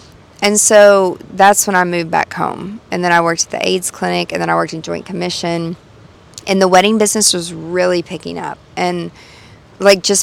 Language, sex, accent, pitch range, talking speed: English, female, American, 165-200 Hz, 200 wpm